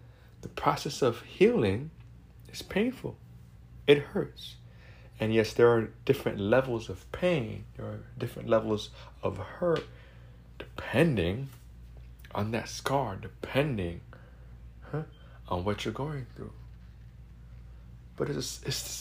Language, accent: English, American